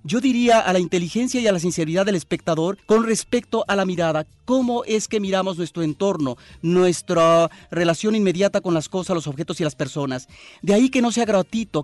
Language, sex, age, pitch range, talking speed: Spanish, male, 40-59, 150-195 Hz, 200 wpm